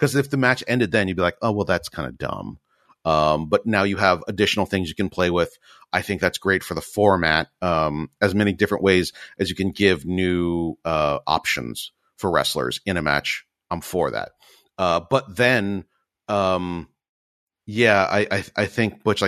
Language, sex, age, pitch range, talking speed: English, male, 40-59, 90-125 Hz, 190 wpm